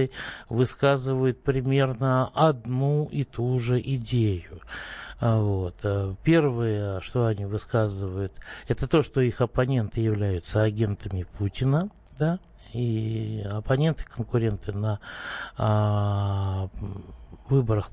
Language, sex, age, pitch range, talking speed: Russian, male, 60-79, 105-130 Hz, 85 wpm